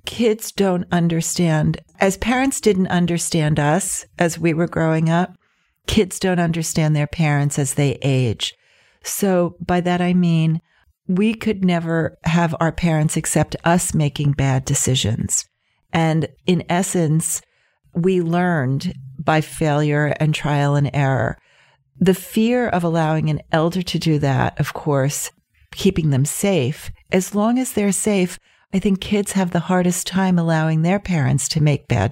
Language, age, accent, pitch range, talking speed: English, 40-59, American, 150-180 Hz, 150 wpm